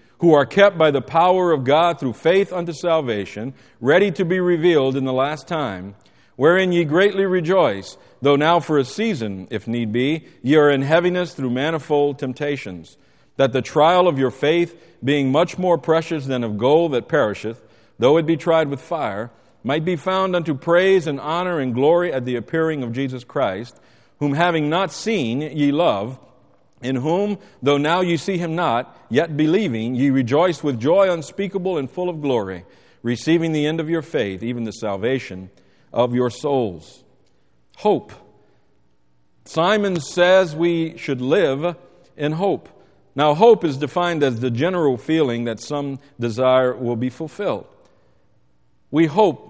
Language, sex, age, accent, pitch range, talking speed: English, male, 50-69, American, 120-170 Hz, 165 wpm